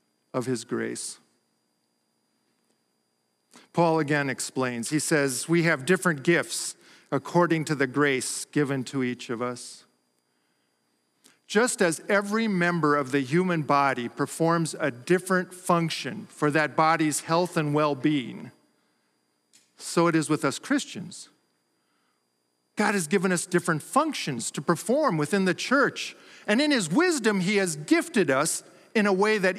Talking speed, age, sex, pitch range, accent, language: 140 wpm, 50-69, male, 125-175 Hz, American, English